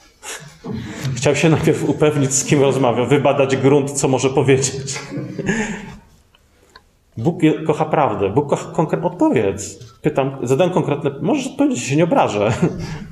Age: 30-49